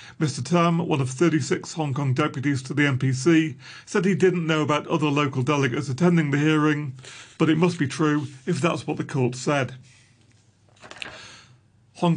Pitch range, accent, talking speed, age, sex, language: 130-160 Hz, British, 170 wpm, 40-59, male, English